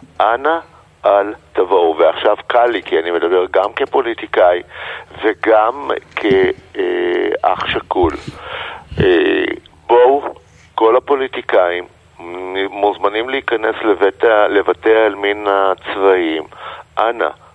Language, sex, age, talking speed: Hebrew, male, 50-69, 80 wpm